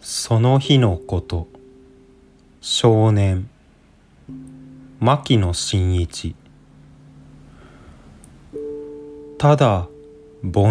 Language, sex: Japanese, male